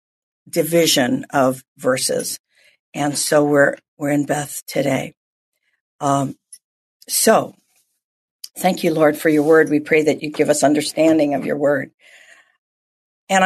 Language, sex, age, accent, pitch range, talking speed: English, female, 50-69, American, 155-180 Hz, 130 wpm